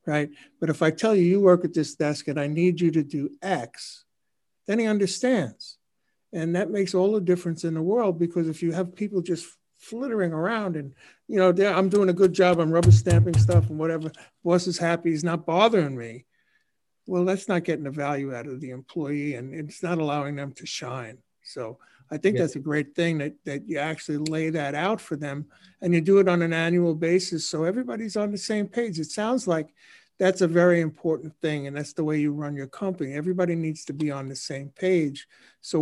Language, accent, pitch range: English, American, 150-180 Hz